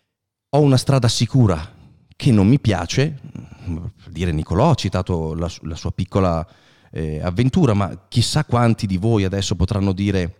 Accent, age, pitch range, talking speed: native, 30-49, 95-125 Hz, 150 wpm